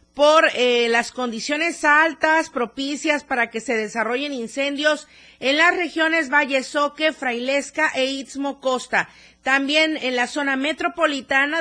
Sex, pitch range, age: female, 215-275 Hz, 40-59